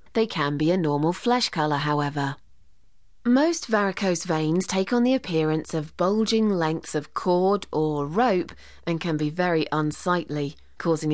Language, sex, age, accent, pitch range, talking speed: English, female, 30-49, British, 150-205 Hz, 150 wpm